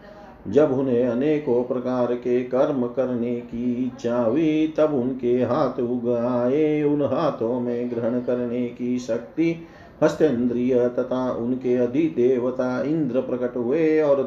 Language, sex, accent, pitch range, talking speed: Hindi, male, native, 120-145 Hz, 120 wpm